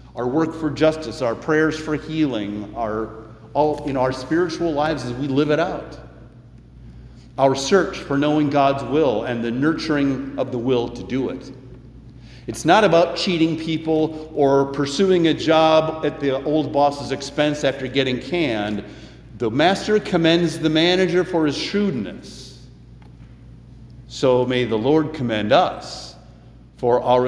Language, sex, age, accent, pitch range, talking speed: English, male, 50-69, American, 120-160 Hz, 145 wpm